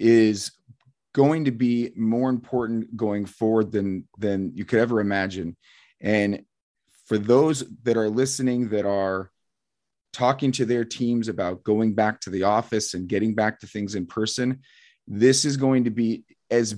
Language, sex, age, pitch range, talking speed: English, male, 30-49, 100-120 Hz, 160 wpm